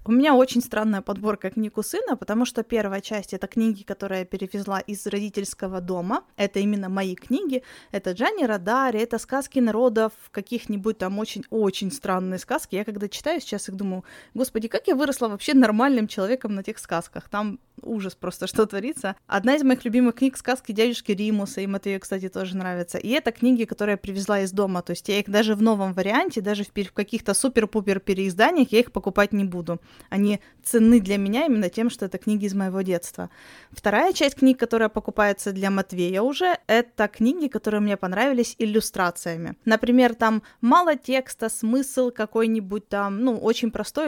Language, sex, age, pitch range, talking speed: Russian, female, 20-39, 200-245 Hz, 180 wpm